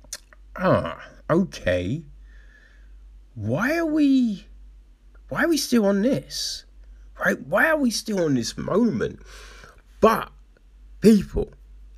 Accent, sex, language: British, male, English